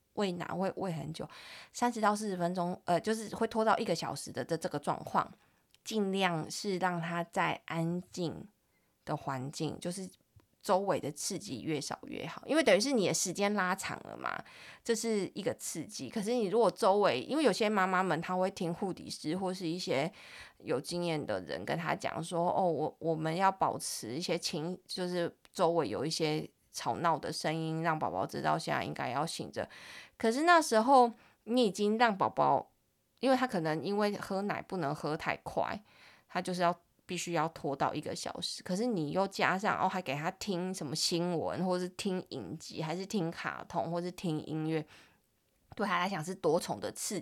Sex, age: female, 20-39